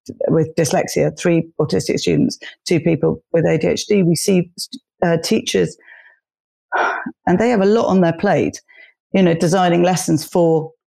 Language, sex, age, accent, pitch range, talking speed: English, female, 40-59, British, 155-190 Hz, 140 wpm